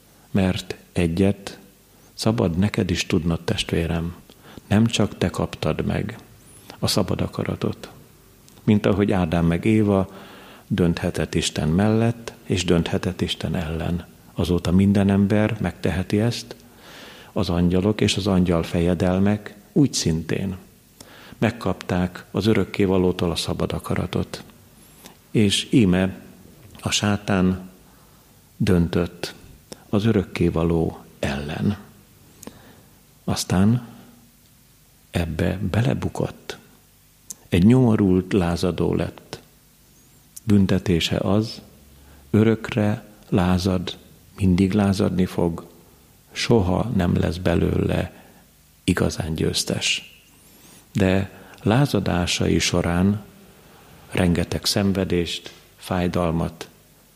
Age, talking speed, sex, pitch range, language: 50-69, 85 wpm, male, 85-105 Hz, Hungarian